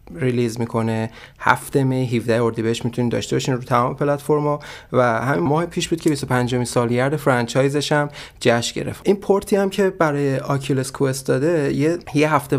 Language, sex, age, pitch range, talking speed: Persian, male, 30-49, 120-145 Hz, 165 wpm